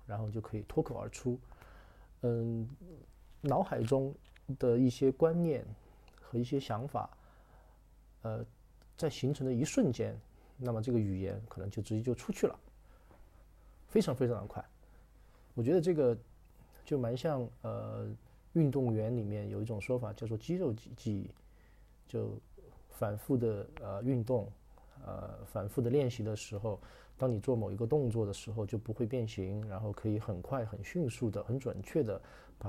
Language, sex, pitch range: Chinese, male, 105-130 Hz